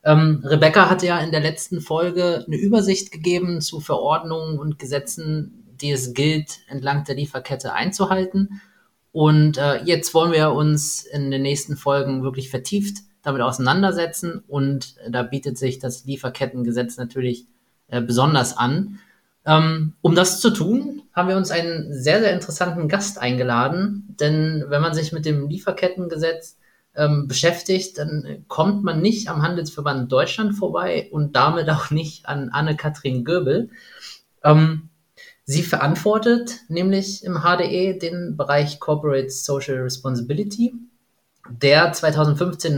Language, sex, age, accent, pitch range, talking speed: German, male, 20-39, German, 135-180 Hz, 130 wpm